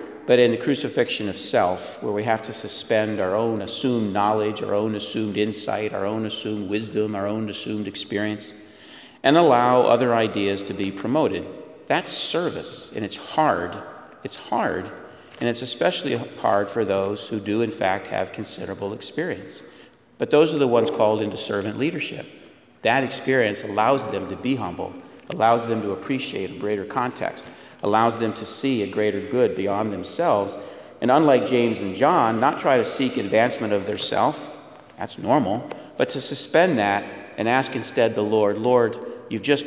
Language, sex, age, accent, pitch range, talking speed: English, male, 50-69, American, 105-115 Hz, 170 wpm